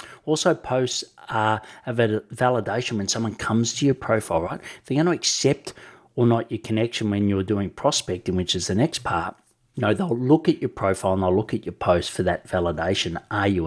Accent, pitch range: Australian, 100-125 Hz